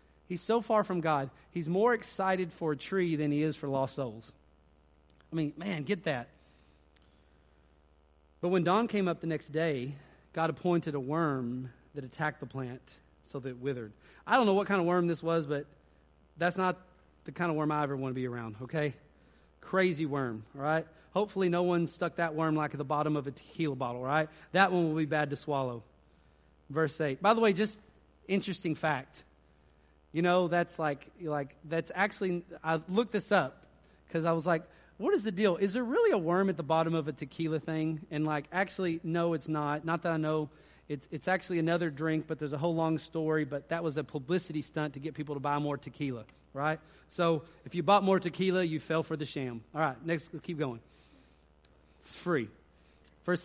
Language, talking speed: English, 210 wpm